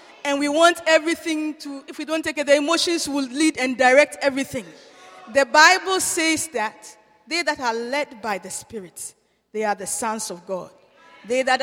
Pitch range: 245-305 Hz